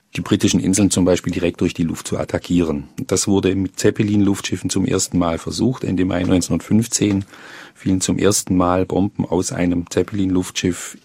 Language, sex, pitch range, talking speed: German, male, 95-110 Hz, 165 wpm